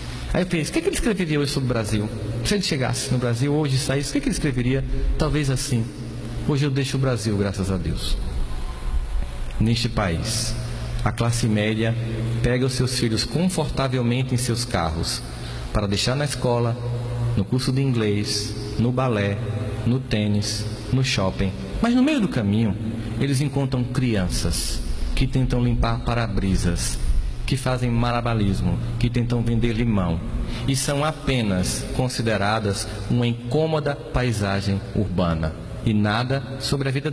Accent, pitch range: Brazilian, 100-130 Hz